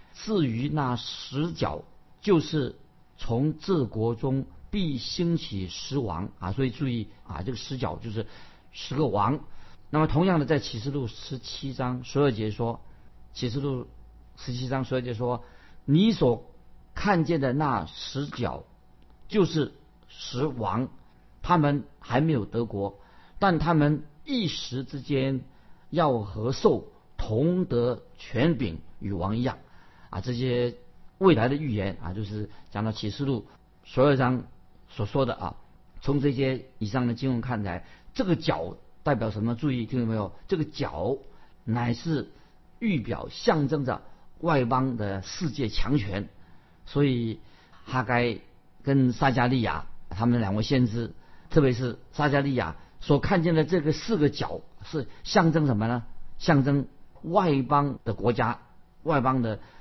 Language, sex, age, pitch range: Chinese, male, 50-69, 110-145 Hz